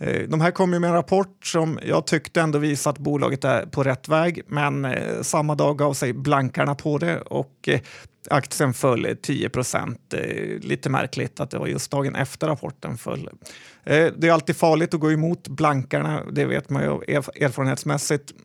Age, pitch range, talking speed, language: 30-49, 145-165 Hz, 170 wpm, Swedish